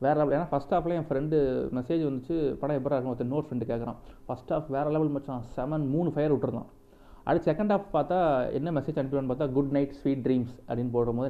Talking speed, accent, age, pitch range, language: 210 wpm, native, 30-49, 125-155 Hz, Tamil